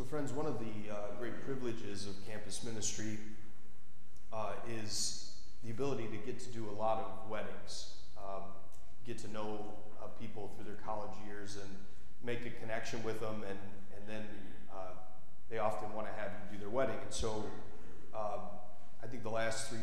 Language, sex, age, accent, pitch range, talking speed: English, male, 30-49, American, 100-115 Hz, 180 wpm